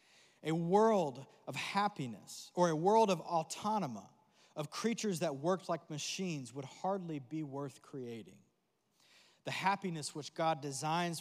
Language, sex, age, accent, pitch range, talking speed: English, male, 20-39, American, 140-175 Hz, 135 wpm